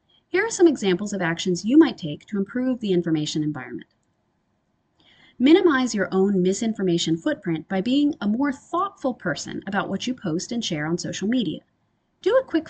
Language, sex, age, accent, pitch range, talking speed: English, female, 30-49, American, 160-245 Hz, 175 wpm